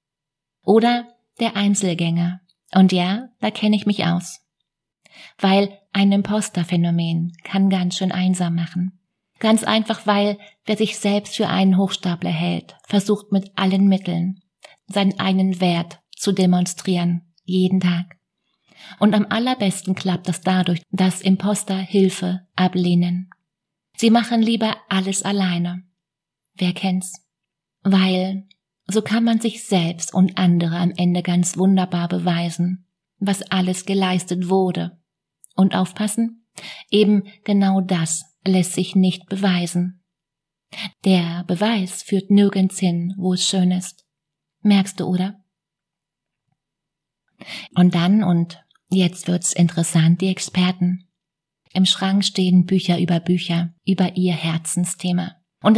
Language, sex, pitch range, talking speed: German, female, 175-195 Hz, 120 wpm